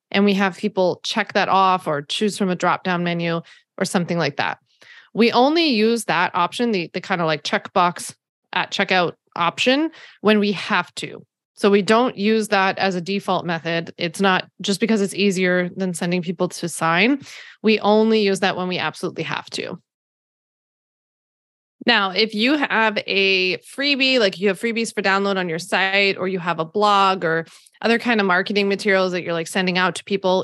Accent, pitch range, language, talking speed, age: American, 180-215 Hz, English, 195 wpm, 20-39